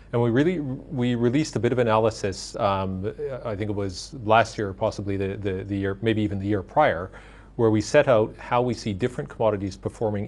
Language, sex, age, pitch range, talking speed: English, male, 40-59, 100-115 Hz, 215 wpm